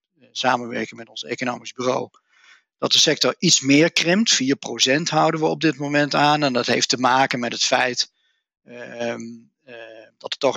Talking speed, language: 175 wpm, Dutch